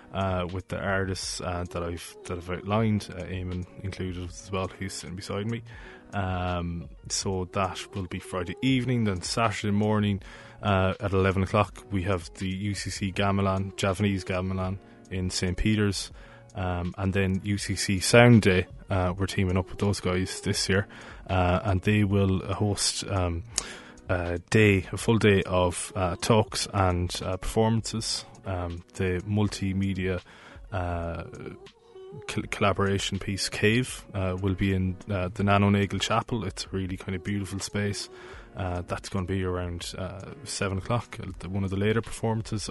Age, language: 20-39, English